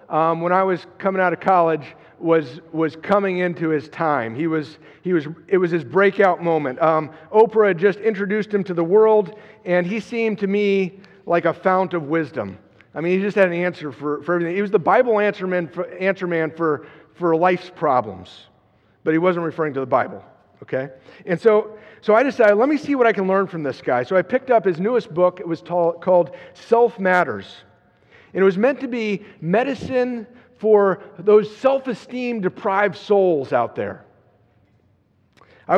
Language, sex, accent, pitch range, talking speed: English, male, American, 165-215 Hz, 195 wpm